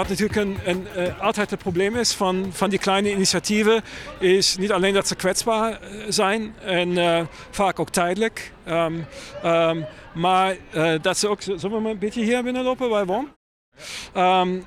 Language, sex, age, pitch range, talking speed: Dutch, male, 50-69, 165-195 Hz, 175 wpm